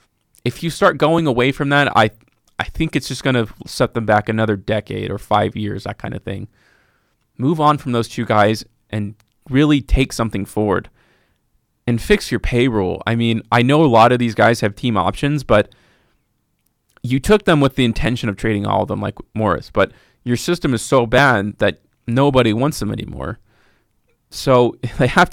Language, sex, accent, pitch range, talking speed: English, male, American, 110-130 Hz, 190 wpm